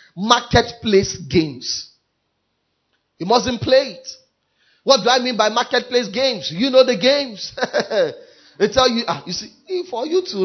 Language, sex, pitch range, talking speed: English, male, 190-260 Hz, 145 wpm